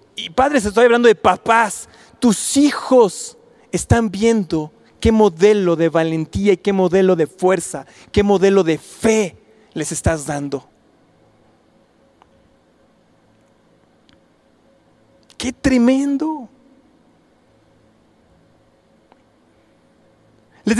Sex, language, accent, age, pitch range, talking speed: male, Spanish, Mexican, 40-59, 190-250 Hz, 85 wpm